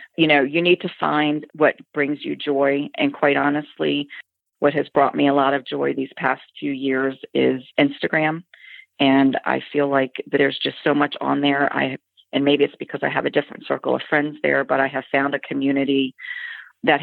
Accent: American